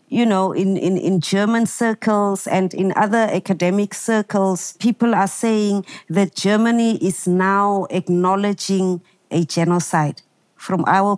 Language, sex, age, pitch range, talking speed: English, female, 50-69, 185-225 Hz, 130 wpm